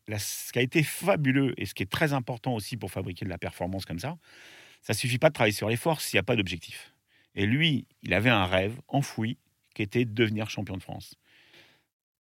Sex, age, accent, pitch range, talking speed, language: male, 40-59, French, 95-135 Hz, 230 wpm, French